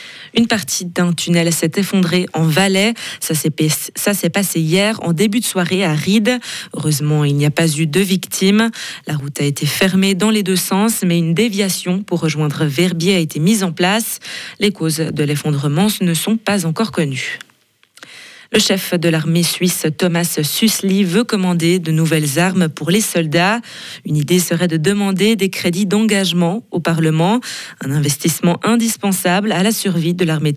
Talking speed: 175 wpm